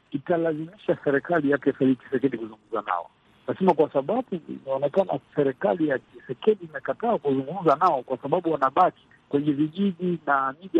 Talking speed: 135 wpm